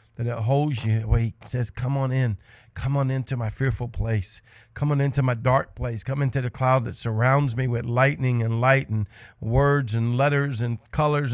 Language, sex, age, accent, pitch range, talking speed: English, male, 50-69, American, 105-125 Hz, 205 wpm